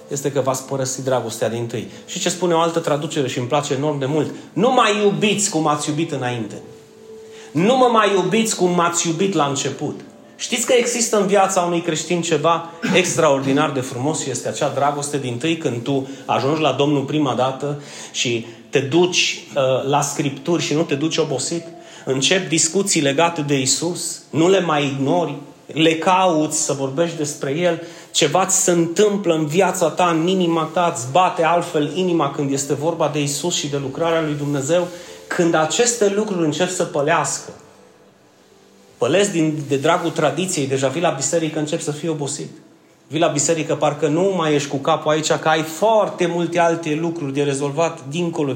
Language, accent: Romanian, native